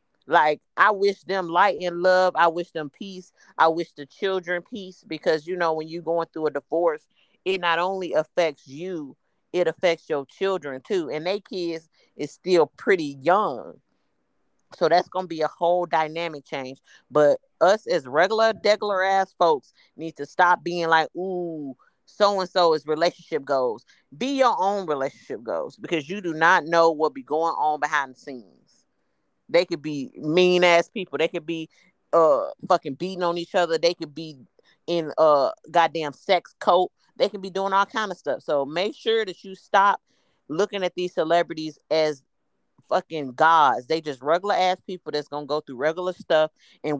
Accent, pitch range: American, 155-190 Hz